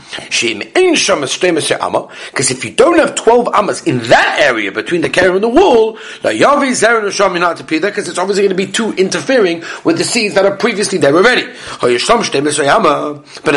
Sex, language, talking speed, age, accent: male, English, 145 wpm, 40-59, British